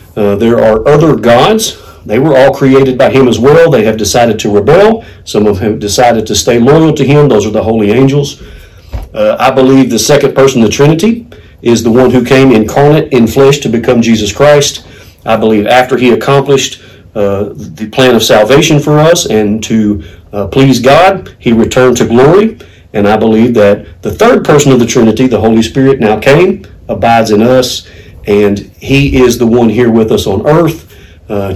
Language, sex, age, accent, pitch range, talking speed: English, male, 40-59, American, 105-140 Hz, 195 wpm